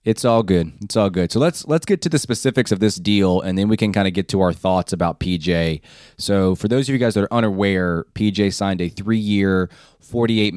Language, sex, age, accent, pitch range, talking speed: English, male, 20-39, American, 90-105 Hz, 240 wpm